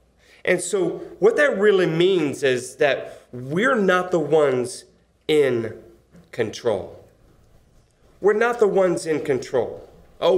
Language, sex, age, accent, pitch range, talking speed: English, male, 30-49, American, 140-195 Hz, 120 wpm